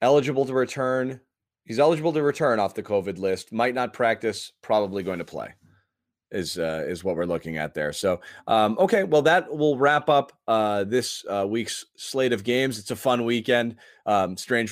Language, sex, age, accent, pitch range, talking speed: English, male, 20-39, American, 100-120 Hz, 190 wpm